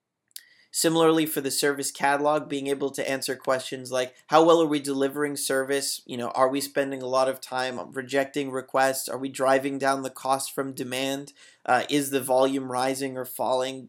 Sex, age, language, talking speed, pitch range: male, 30-49, English, 185 wpm, 135-150 Hz